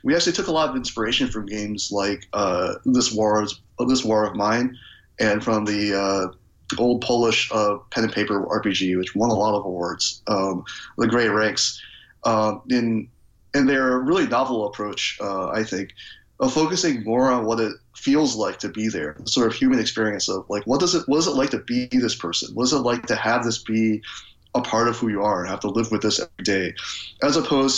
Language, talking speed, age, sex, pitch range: English, 220 wpm, 30-49, male, 105-125 Hz